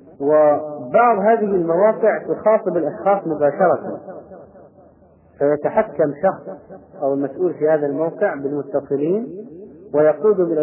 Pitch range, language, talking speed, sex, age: 140-165 Hz, Arabic, 90 wpm, male, 40-59